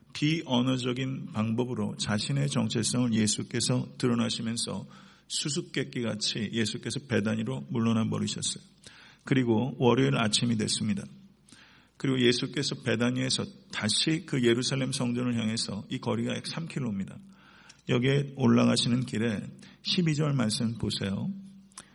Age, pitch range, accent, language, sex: 50-69, 115-145 Hz, native, Korean, male